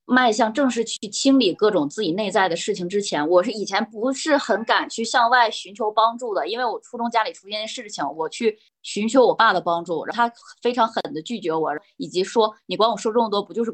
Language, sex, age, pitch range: Chinese, female, 20-39, 195-250 Hz